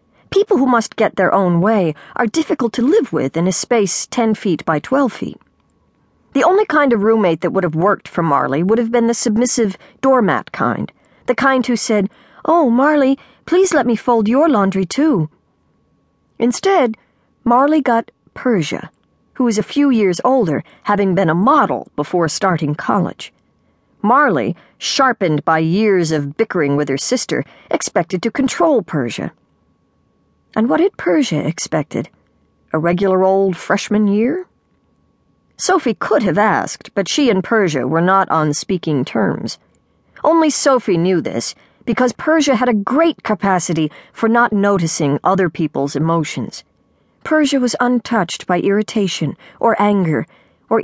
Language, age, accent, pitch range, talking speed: English, 50-69, American, 185-255 Hz, 150 wpm